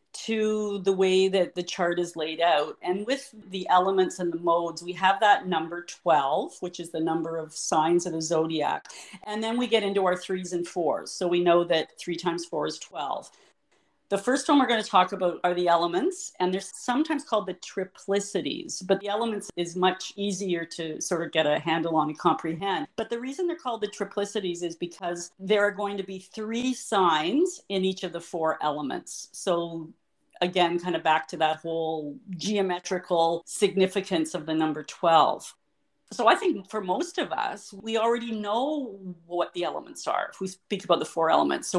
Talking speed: 195 wpm